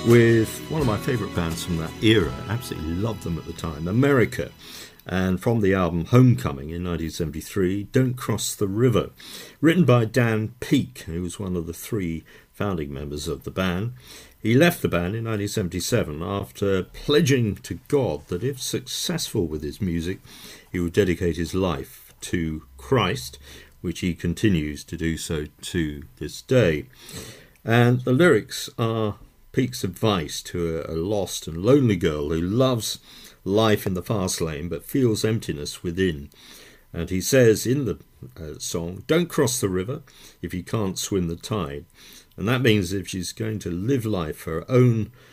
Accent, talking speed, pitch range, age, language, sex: British, 165 wpm, 85-115 Hz, 50-69, English, male